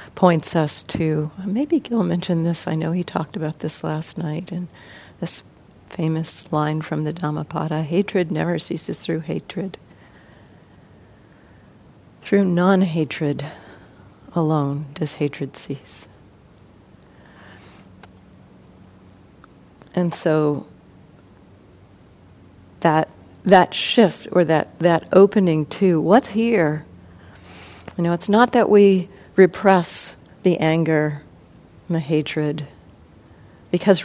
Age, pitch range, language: 50-69, 110-175 Hz, English